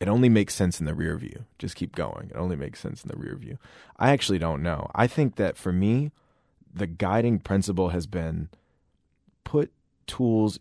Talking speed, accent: 200 wpm, American